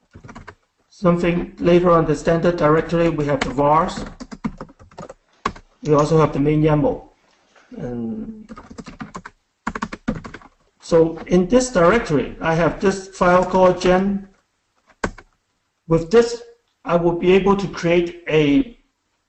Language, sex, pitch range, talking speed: English, male, 150-180 Hz, 110 wpm